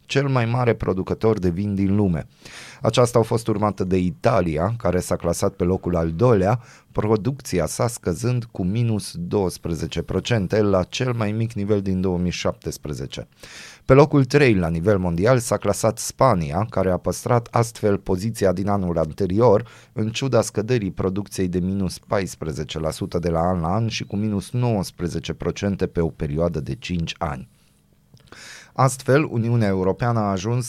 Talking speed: 155 wpm